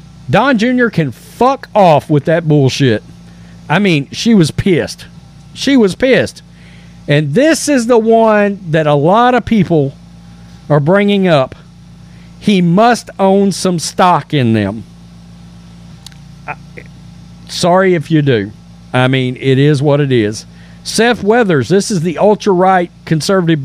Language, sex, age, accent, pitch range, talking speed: English, male, 50-69, American, 125-195 Hz, 140 wpm